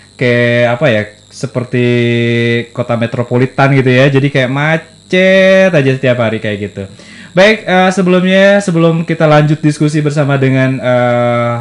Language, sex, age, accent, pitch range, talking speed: Indonesian, male, 20-39, native, 120-150 Hz, 135 wpm